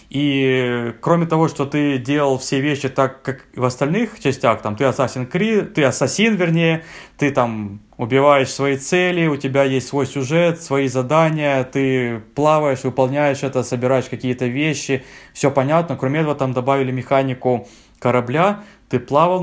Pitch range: 120-145 Hz